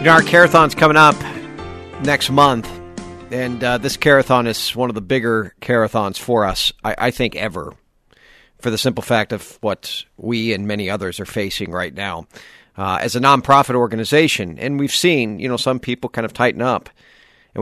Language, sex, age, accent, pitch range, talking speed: English, male, 40-59, American, 95-120 Hz, 180 wpm